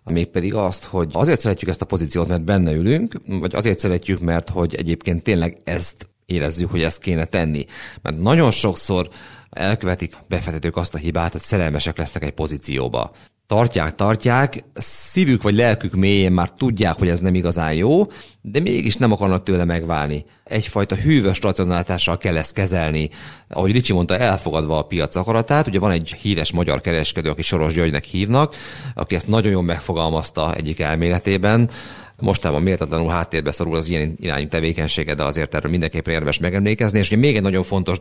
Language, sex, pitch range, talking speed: Hungarian, male, 80-100 Hz, 170 wpm